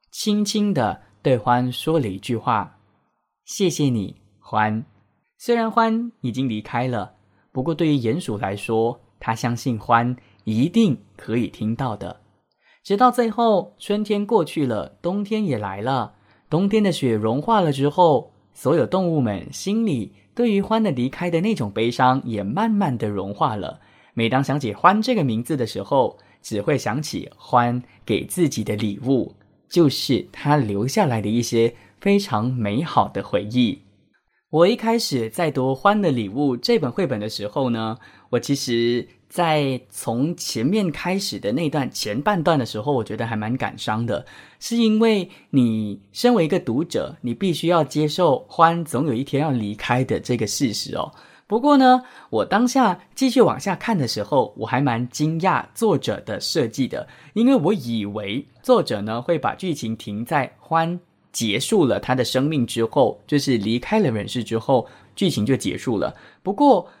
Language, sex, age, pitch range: English, male, 20-39, 115-185 Hz